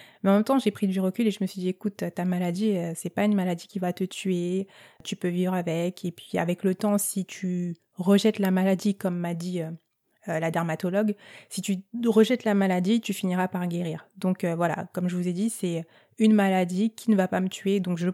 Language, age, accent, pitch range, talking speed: French, 20-39, French, 175-205 Hz, 240 wpm